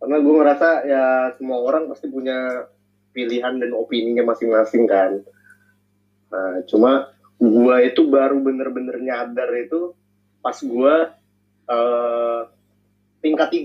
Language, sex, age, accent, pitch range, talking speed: Indonesian, male, 30-49, native, 115-190 Hz, 110 wpm